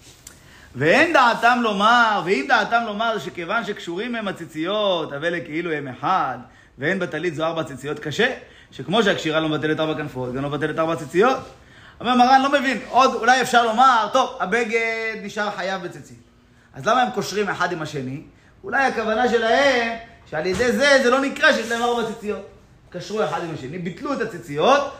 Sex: male